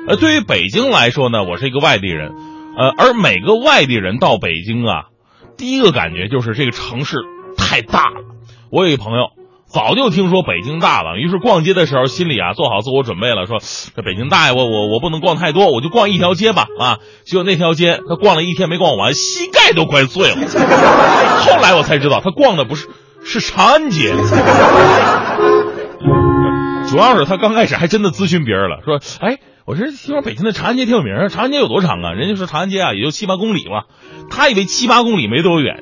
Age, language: 30-49, Chinese